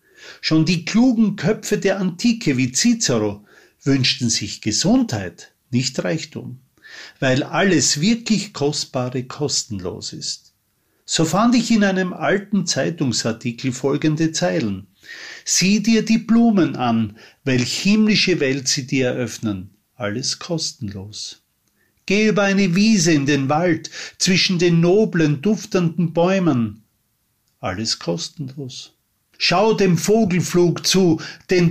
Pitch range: 130-190 Hz